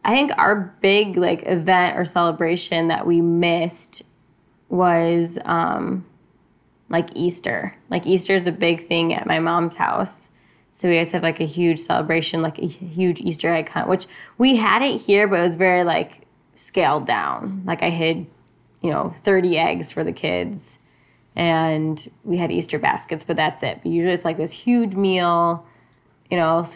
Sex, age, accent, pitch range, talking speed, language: female, 10-29, American, 165-180 Hz, 175 wpm, English